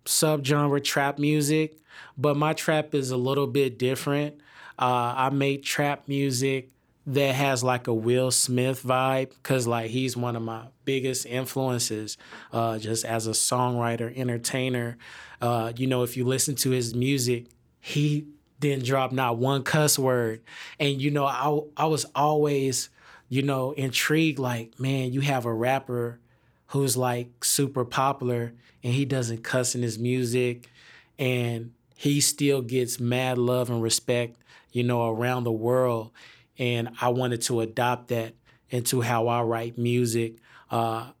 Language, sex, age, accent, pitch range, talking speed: English, male, 20-39, American, 120-135 Hz, 155 wpm